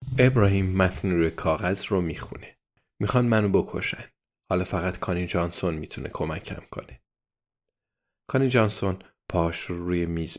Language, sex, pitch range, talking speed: Persian, male, 90-115 Hz, 125 wpm